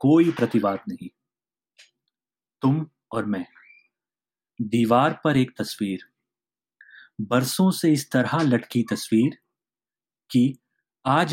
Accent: native